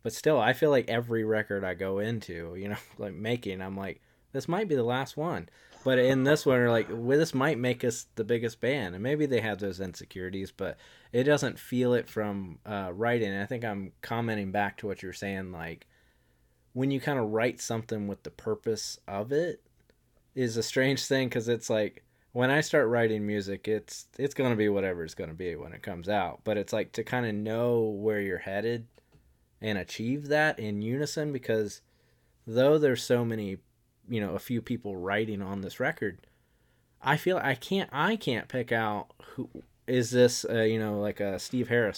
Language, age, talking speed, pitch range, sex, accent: English, 20-39, 205 wpm, 100-125 Hz, male, American